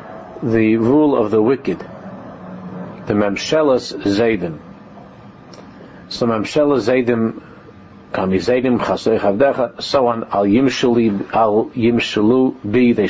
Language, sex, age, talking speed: English, male, 50-69, 95 wpm